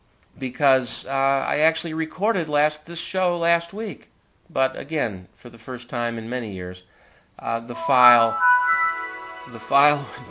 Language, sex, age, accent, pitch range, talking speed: English, male, 50-69, American, 110-140 Hz, 145 wpm